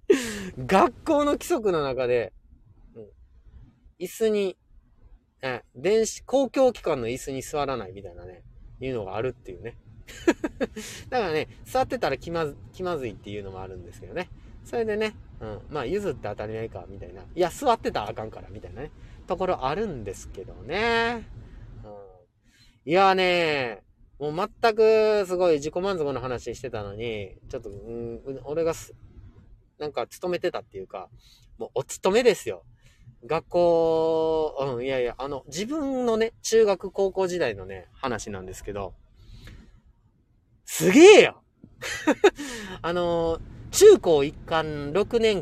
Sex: male